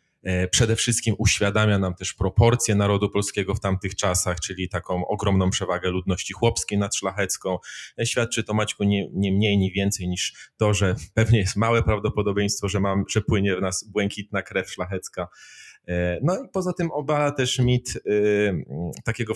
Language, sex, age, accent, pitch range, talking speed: Polish, male, 30-49, native, 90-110 Hz, 155 wpm